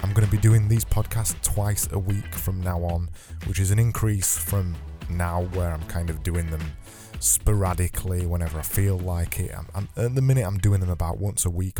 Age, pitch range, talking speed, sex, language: 20-39, 85-105 Hz, 215 wpm, male, English